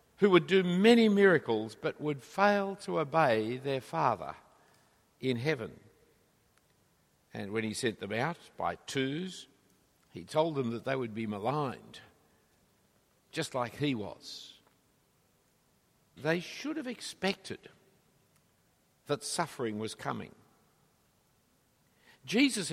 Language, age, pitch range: English, 60-79, 125-180 Hz